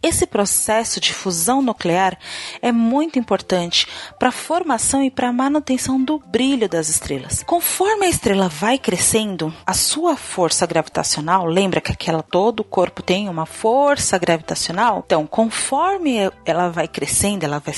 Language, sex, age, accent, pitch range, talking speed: Portuguese, female, 30-49, Brazilian, 190-275 Hz, 150 wpm